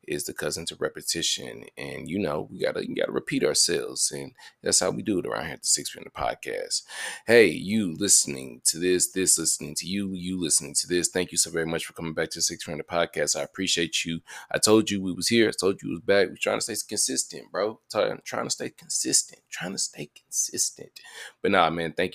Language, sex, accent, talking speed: English, male, American, 240 wpm